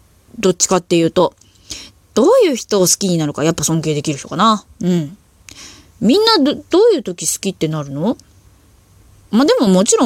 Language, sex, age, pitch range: Japanese, female, 20-39, 160-255 Hz